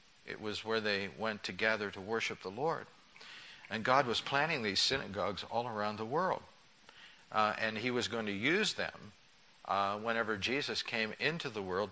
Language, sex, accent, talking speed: English, male, American, 175 wpm